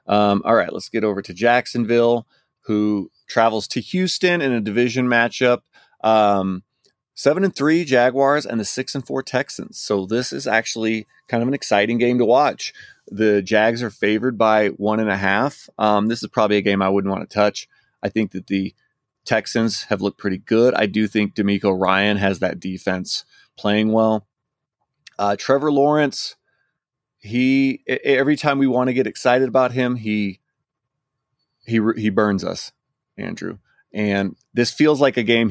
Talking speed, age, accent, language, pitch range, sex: 170 wpm, 30-49, American, English, 100-125 Hz, male